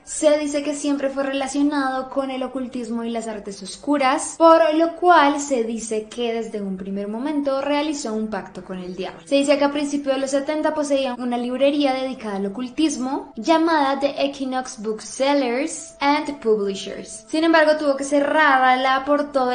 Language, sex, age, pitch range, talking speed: Spanish, female, 10-29, 225-285 Hz, 170 wpm